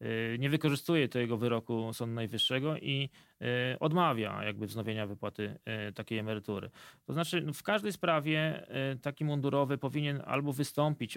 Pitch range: 115-145 Hz